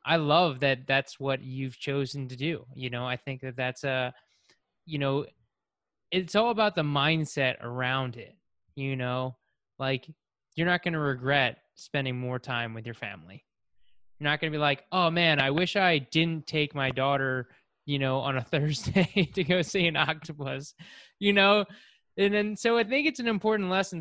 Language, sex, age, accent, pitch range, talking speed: English, male, 20-39, American, 130-160 Hz, 185 wpm